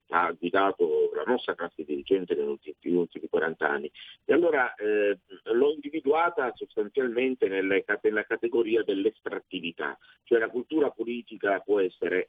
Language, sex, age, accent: Italian, male, 50-69, native